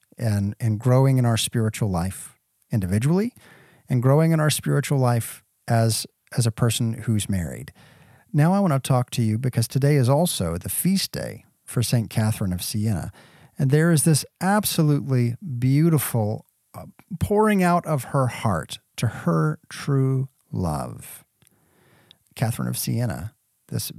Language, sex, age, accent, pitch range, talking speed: English, male, 40-59, American, 110-150 Hz, 150 wpm